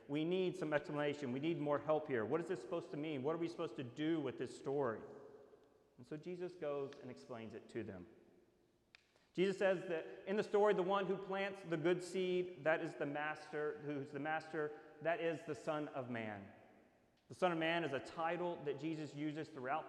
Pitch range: 140-170 Hz